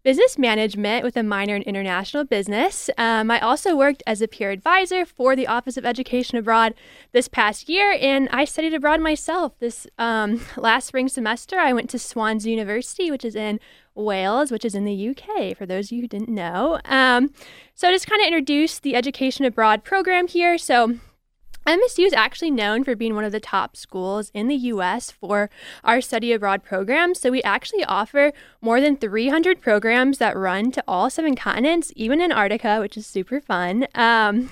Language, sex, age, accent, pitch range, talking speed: English, female, 10-29, American, 220-305 Hz, 190 wpm